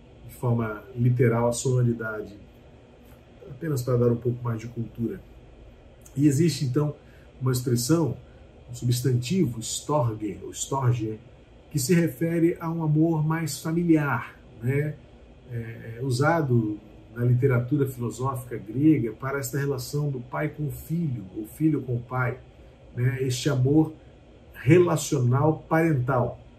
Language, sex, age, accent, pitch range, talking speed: Portuguese, male, 50-69, Brazilian, 120-160 Hz, 120 wpm